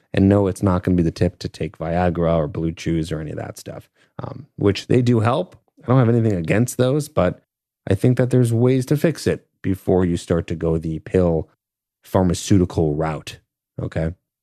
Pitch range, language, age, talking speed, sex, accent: 85-115 Hz, English, 30-49, 210 wpm, male, American